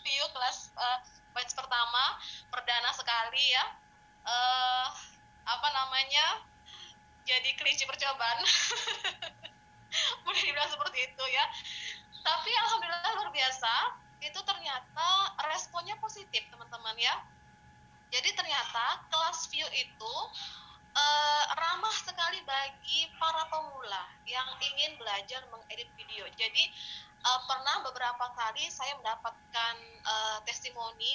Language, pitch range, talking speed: Indonesian, 235-300 Hz, 100 wpm